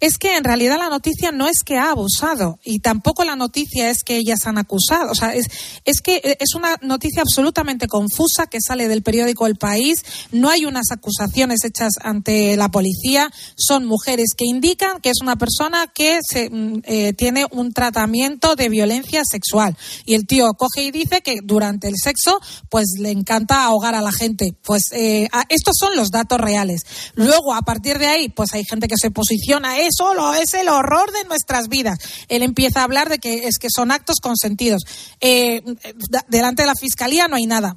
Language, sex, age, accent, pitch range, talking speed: Spanish, female, 30-49, Spanish, 220-270 Hz, 195 wpm